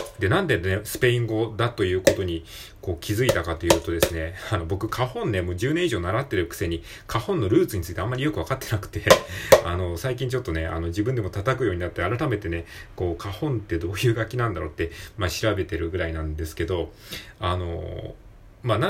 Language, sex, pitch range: Japanese, male, 90-120 Hz